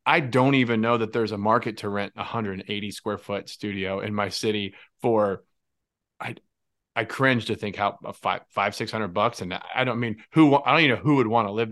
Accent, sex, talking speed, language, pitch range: American, male, 220 wpm, English, 110-140 Hz